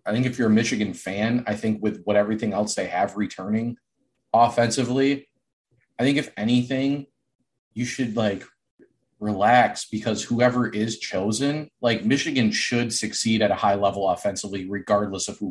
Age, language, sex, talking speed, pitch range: 30-49, English, male, 160 wpm, 105-125 Hz